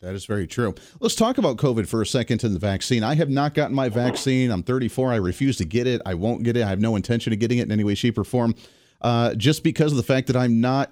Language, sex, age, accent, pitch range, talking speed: English, male, 40-59, American, 115-140 Hz, 290 wpm